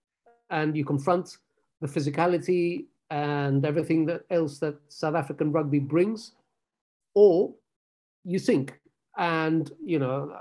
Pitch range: 150-185 Hz